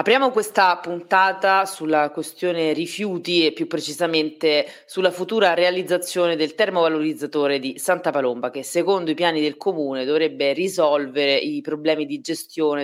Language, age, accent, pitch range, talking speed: Italian, 30-49, native, 150-185 Hz, 135 wpm